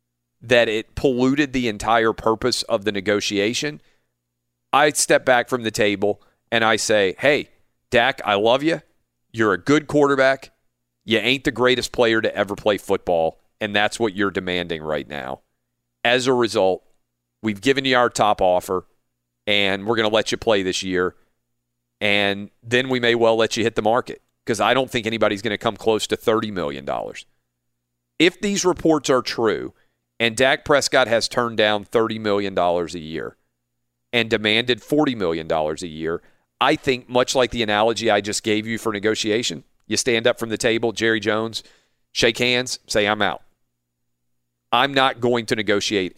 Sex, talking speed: male, 175 wpm